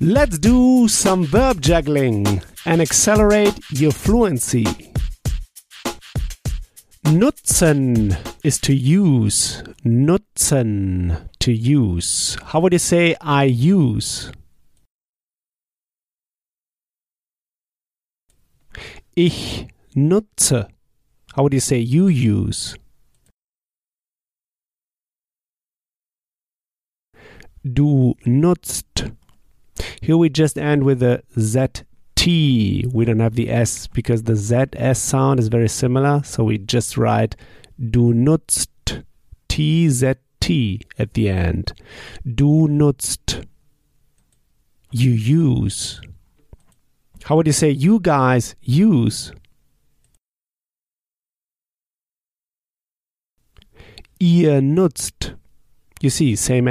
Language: German